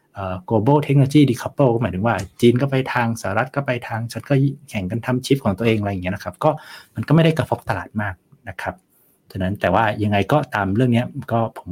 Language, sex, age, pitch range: Thai, male, 60-79, 100-130 Hz